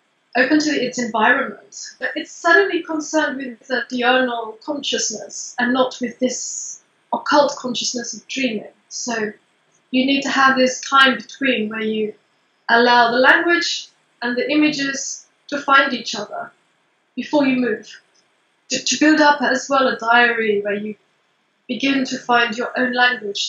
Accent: British